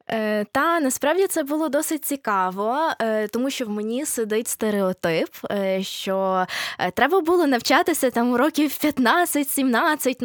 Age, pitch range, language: 20-39, 190-245 Hz, Ukrainian